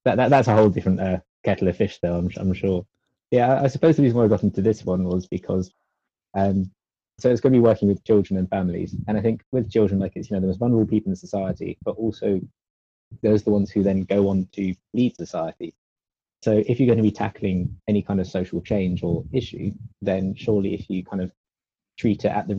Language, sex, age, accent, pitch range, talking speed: English, male, 20-39, British, 95-105 Hz, 240 wpm